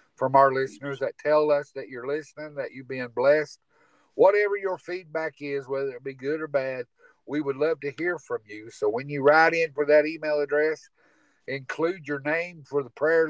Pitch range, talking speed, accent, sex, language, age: 135-155 Hz, 205 wpm, American, male, English, 50-69